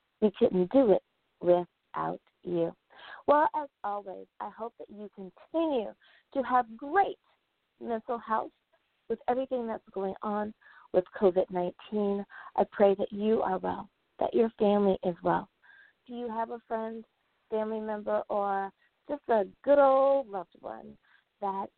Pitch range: 195-250 Hz